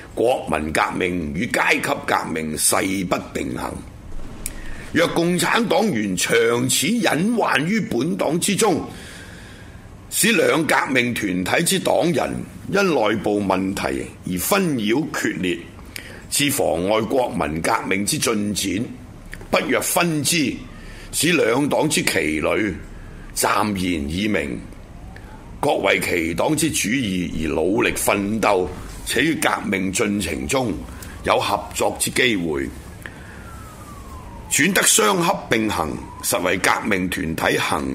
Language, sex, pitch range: Chinese, male, 90-150 Hz